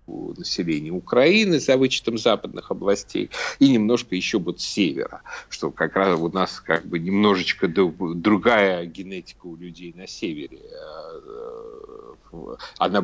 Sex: male